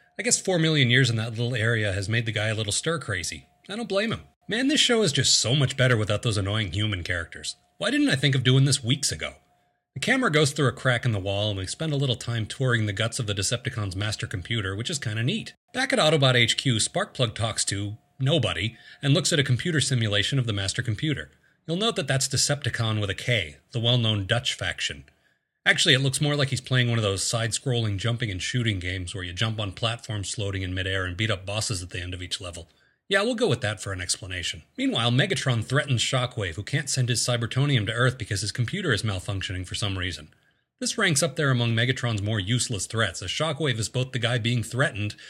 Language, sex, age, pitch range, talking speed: English, male, 30-49, 105-135 Hz, 235 wpm